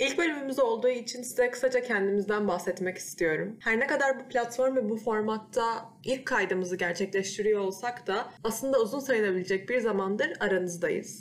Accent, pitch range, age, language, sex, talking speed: native, 195-260 Hz, 20-39, Turkish, female, 150 wpm